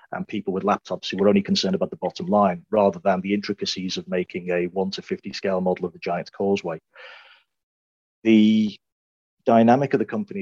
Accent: British